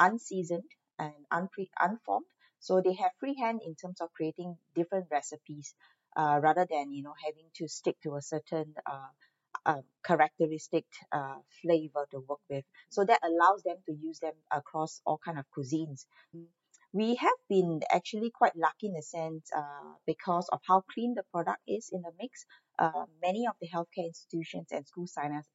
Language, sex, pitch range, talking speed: English, female, 150-185 Hz, 175 wpm